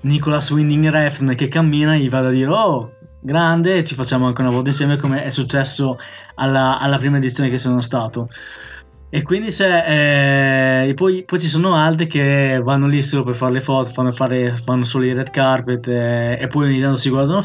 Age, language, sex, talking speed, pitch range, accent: 20-39, Italian, male, 205 wpm, 125-145 Hz, native